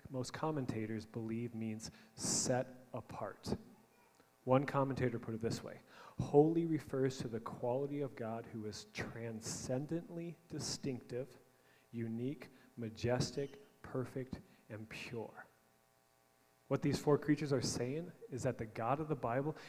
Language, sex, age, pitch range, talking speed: English, male, 30-49, 105-135 Hz, 125 wpm